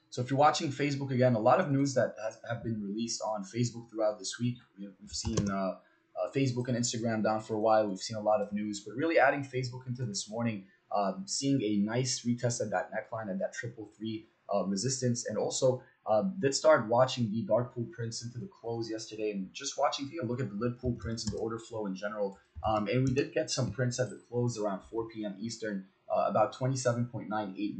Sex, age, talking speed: male, 20-39, 230 wpm